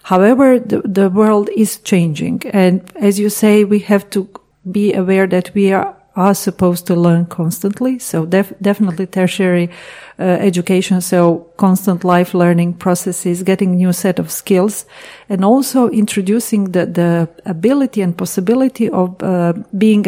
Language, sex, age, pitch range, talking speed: Croatian, female, 40-59, 180-210 Hz, 150 wpm